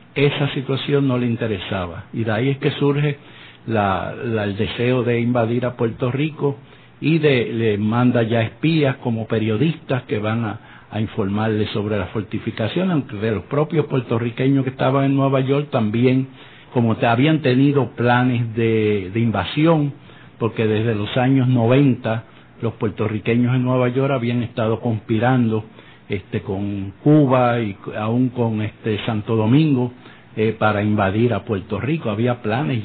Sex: male